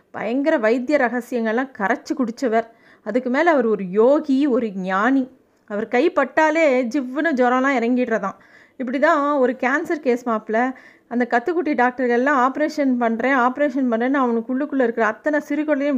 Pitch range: 230-280 Hz